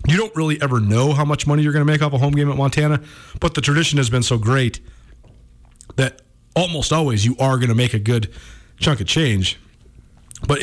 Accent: American